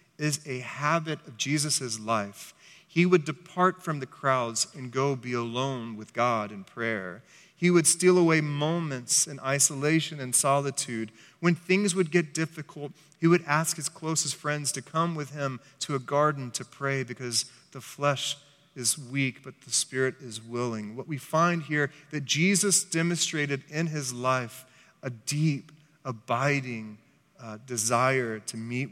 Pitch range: 130-170 Hz